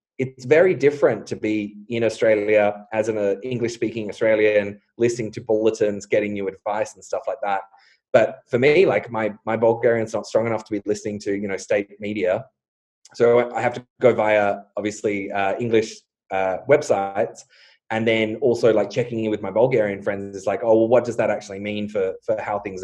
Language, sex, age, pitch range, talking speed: English, male, 20-39, 105-125 Hz, 195 wpm